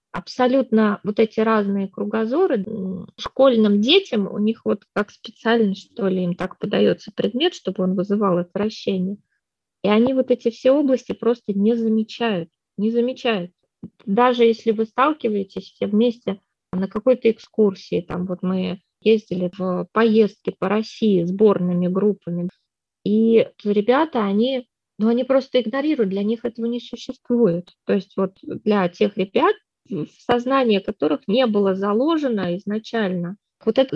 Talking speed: 140 wpm